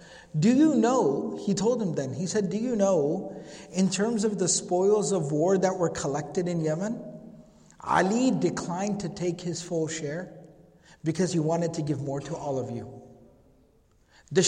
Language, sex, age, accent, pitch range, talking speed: English, male, 50-69, American, 175-235 Hz, 175 wpm